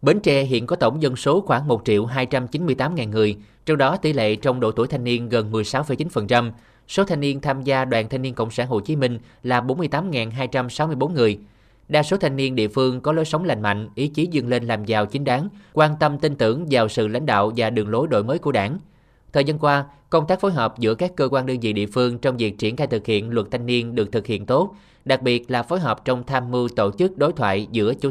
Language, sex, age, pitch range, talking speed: Vietnamese, male, 20-39, 115-145 Hz, 240 wpm